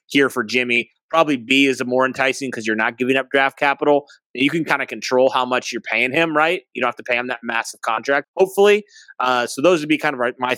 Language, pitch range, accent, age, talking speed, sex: English, 120-155 Hz, American, 30-49, 250 wpm, male